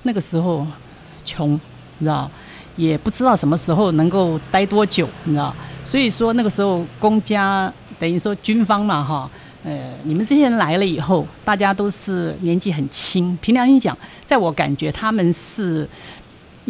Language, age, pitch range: Chinese, 50-69, 155-215 Hz